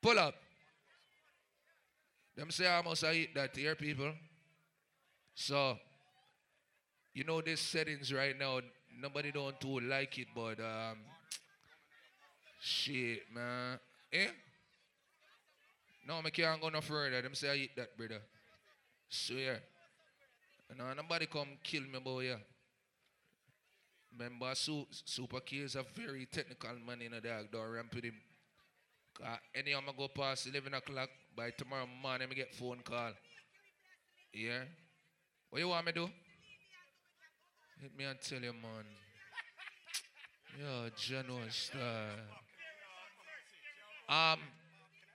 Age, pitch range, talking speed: 20-39, 125-170 Hz, 130 wpm